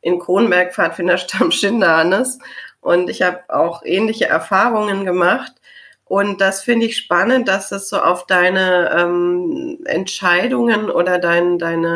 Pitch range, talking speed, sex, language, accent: 185-235 Hz, 135 wpm, female, German, German